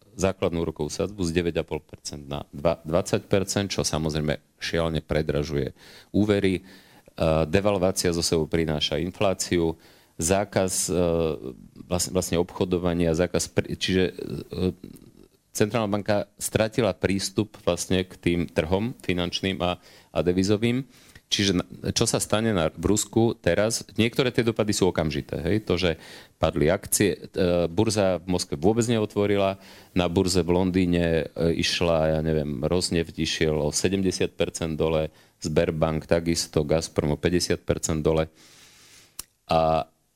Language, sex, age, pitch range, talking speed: Slovak, male, 40-59, 80-95 Hz, 110 wpm